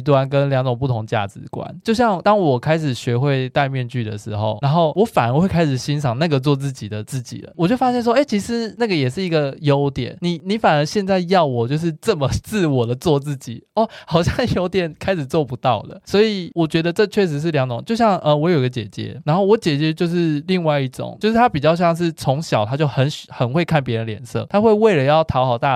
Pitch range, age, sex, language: 125-165 Hz, 20-39, male, Chinese